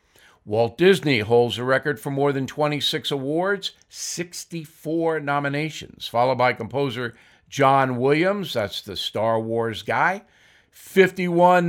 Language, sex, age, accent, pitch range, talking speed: English, male, 50-69, American, 125-165 Hz, 120 wpm